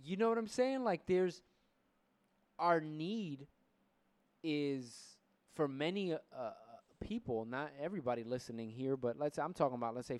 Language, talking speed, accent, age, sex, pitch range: English, 160 wpm, American, 20-39, male, 120-165 Hz